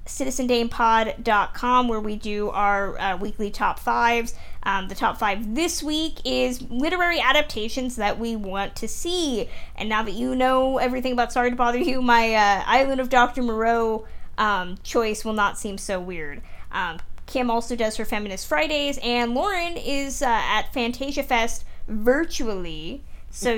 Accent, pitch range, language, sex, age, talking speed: American, 205-255 Hz, English, female, 20-39, 160 wpm